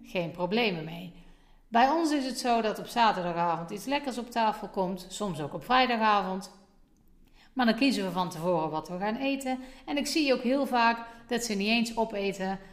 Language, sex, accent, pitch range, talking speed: Dutch, female, Dutch, 175-235 Hz, 195 wpm